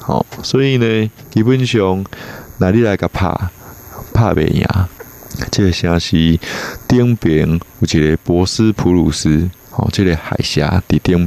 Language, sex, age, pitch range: Chinese, male, 20-39, 85-110 Hz